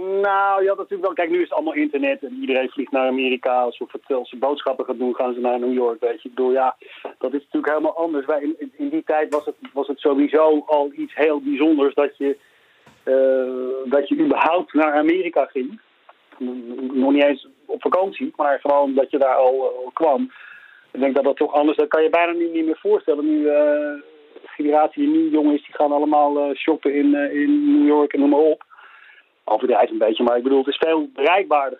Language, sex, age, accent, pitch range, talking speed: Dutch, male, 40-59, Dutch, 135-165 Hz, 210 wpm